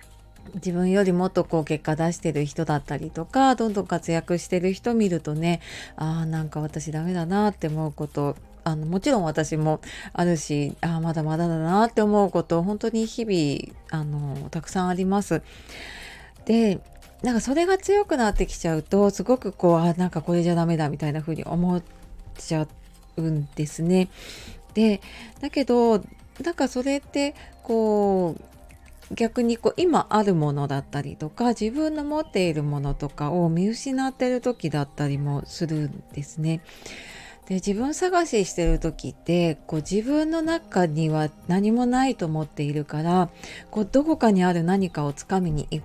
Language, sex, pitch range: Japanese, female, 155-220 Hz